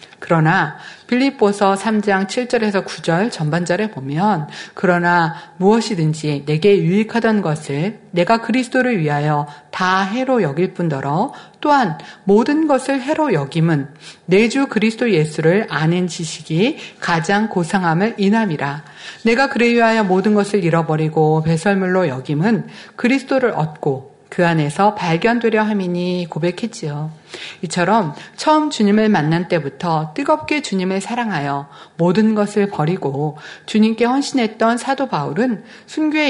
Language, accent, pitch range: Korean, native, 165-235 Hz